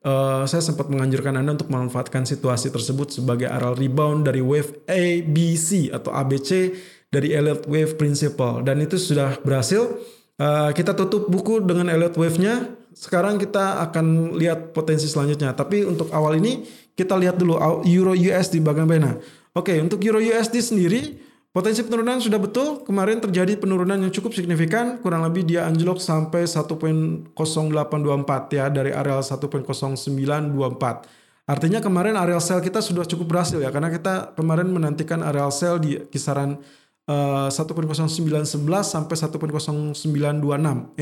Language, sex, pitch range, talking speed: Indonesian, male, 150-190 Hz, 135 wpm